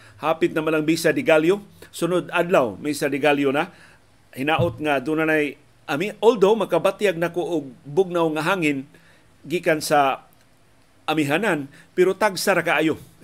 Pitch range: 140-165 Hz